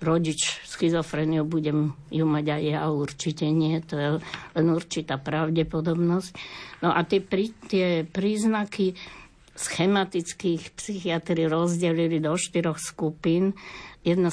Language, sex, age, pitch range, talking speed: Slovak, female, 60-79, 155-175 Hz, 115 wpm